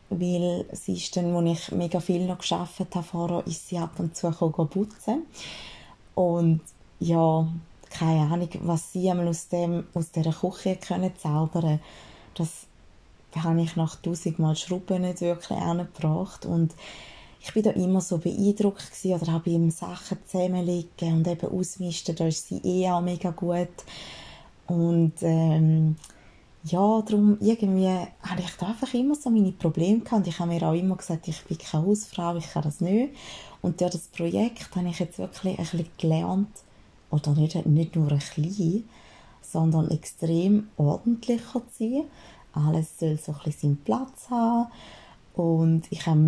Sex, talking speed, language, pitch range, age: female, 160 wpm, German, 165-190 Hz, 20-39